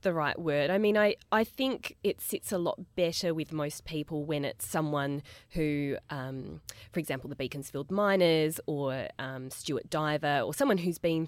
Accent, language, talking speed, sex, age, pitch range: Australian, English, 180 wpm, female, 20-39, 135-170 Hz